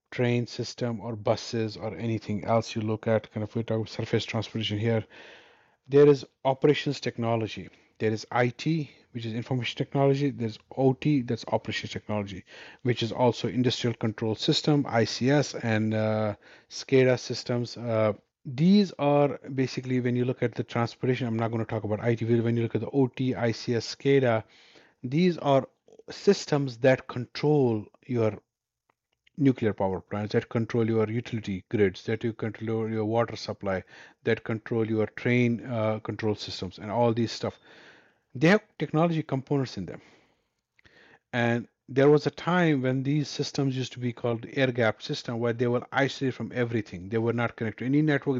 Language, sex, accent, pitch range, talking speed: English, male, Indian, 110-130 Hz, 160 wpm